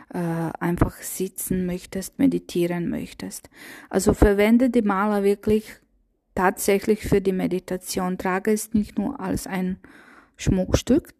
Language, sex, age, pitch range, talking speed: German, female, 20-39, 185-215 Hz, 120 wpm